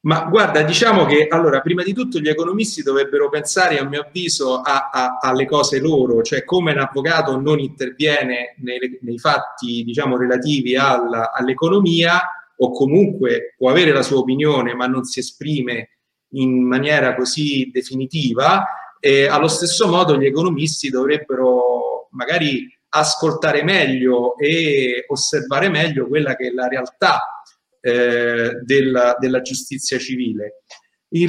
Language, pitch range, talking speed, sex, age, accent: Italian, 125-170 Hz, 130 wpm, male, 30-49, native